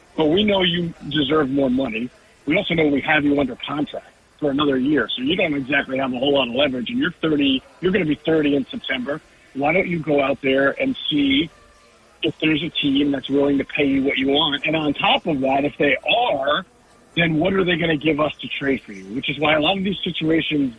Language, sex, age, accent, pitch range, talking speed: English, male, 50-69, American, 140-175 Hz, 250 wpm